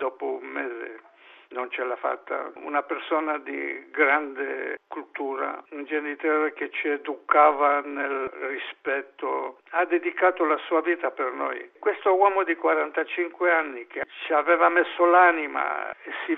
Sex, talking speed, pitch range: male, 140 wpm, 150-185 Hz